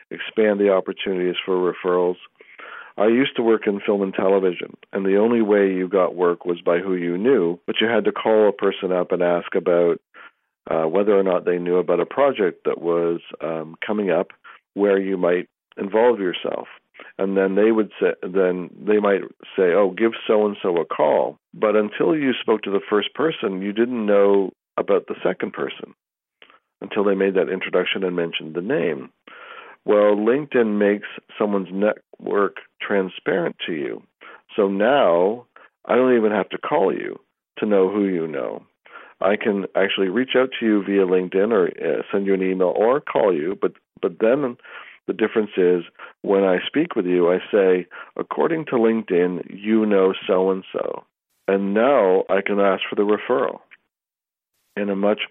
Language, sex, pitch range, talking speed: English, male, 90-105 Hz, 180 wpm